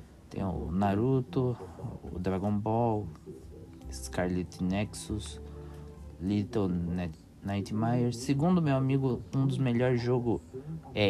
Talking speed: 95 wpm